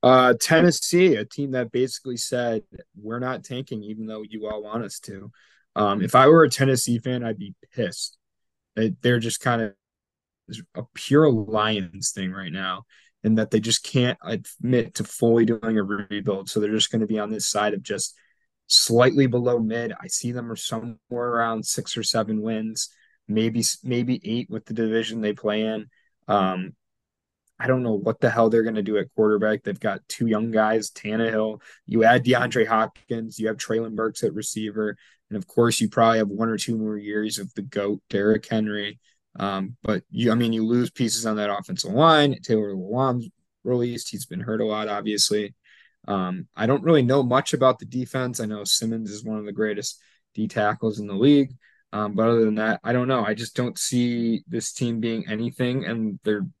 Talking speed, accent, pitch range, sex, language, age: 200 wpm, American, 105-125 Hz, male, English, 20-39